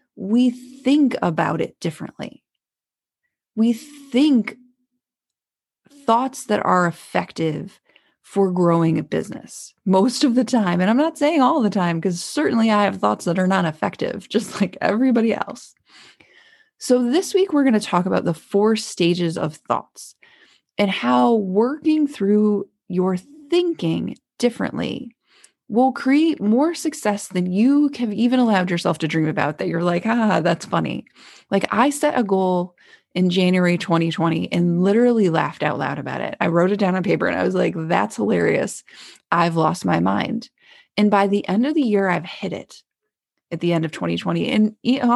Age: 20-39